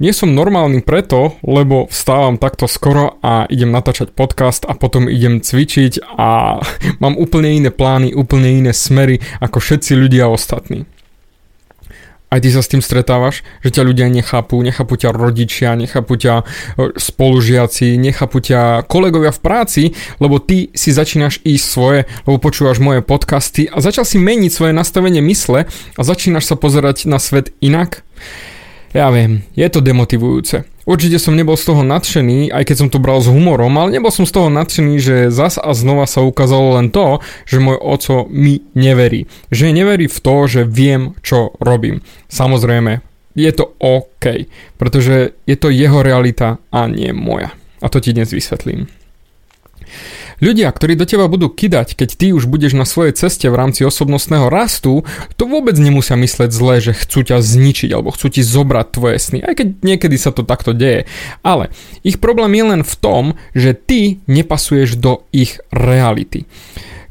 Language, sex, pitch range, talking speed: Slovak, male, 125-155 Hz, 165 wpm